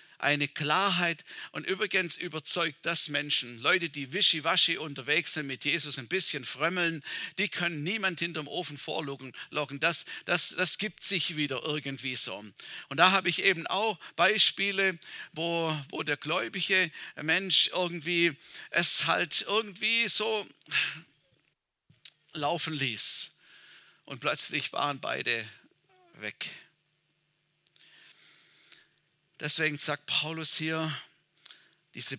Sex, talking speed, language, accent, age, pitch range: male, 110 wpm, German, German, 50-69, 135-165 Hz